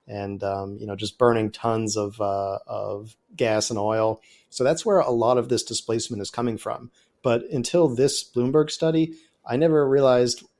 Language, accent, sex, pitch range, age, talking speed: English, American, male, 105-120 Hz, 30-49, 180 wpm